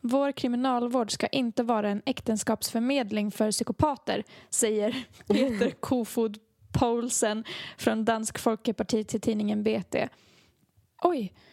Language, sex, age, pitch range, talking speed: Swedish, female, 20-39, 225-260 Hz, 100 wpm